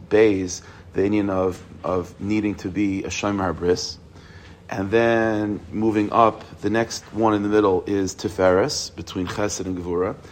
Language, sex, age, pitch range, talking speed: English, male, 40-59, 95-110 Hz, 155 wpm